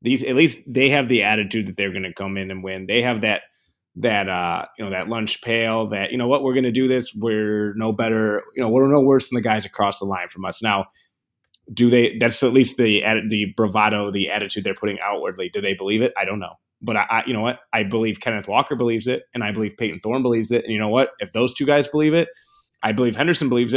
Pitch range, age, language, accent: 105-130 Hz, 20-39, English, American